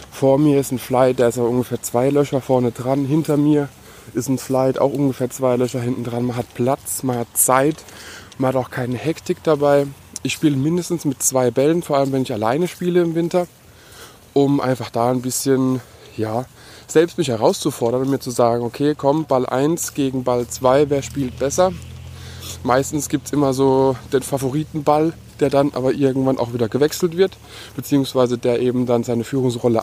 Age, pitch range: 20-39, 120-140 Hz